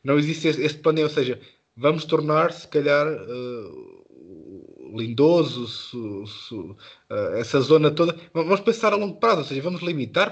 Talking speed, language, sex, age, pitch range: 155 wpm, Portuguese, male, 20-39, 130-155 Hz